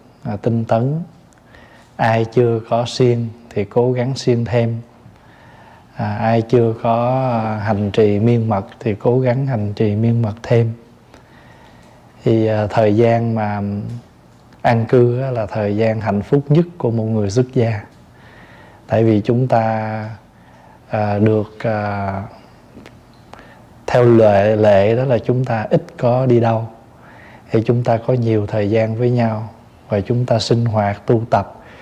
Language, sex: Vietnamese, male